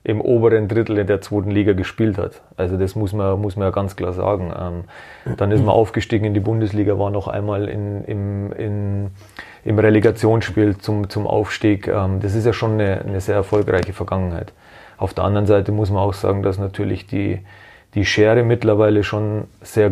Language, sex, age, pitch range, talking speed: German, male, 30-49, 95-110 Hz, 185 wpm